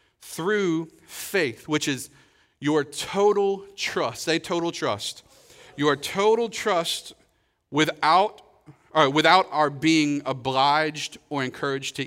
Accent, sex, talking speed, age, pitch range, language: American, male, 105 wpm, 40-59, 130-170 Hz, English